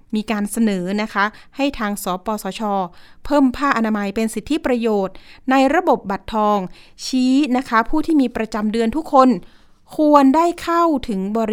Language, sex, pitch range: Thai, female, 205-260 Hz